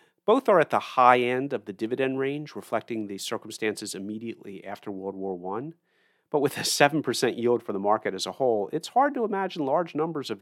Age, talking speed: 40-59, 205 wpm